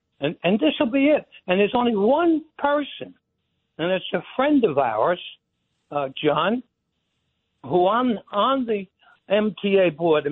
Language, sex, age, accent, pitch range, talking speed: English, male, 60-79, American, 170-225 Hz, 150 wpm